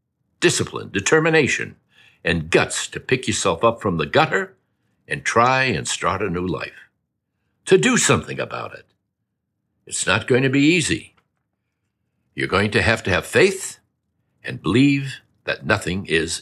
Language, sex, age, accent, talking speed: English, male, 60-79, American, 150 wpm